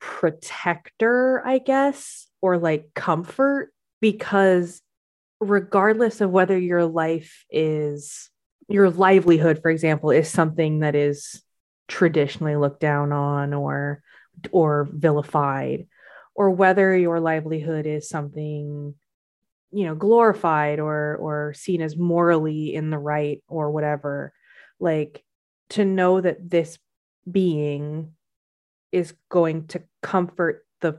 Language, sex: English, female